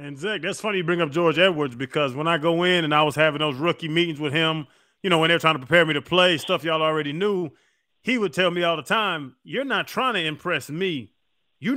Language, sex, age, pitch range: English, male, 30-49, 160-200 Hz